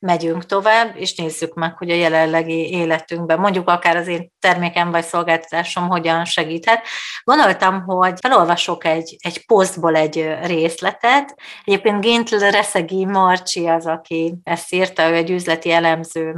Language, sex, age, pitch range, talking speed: Hungarian, female, 30-49, 165-195 Hz, 140 wpm